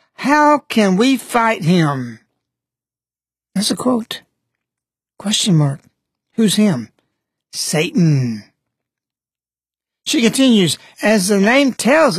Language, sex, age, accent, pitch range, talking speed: English, male, 60-79, American, 150-230 Hz, 95 wpm